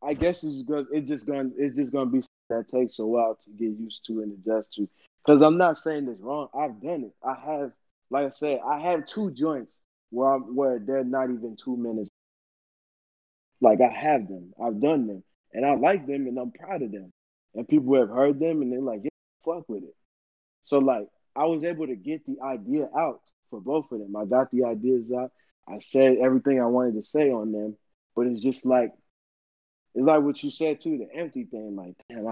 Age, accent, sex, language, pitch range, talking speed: 20-39, American, male, English, 115-145 Hz, 225 wpm